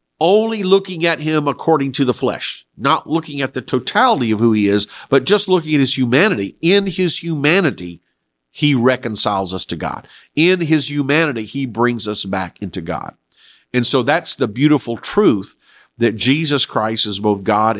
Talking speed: 175 wpm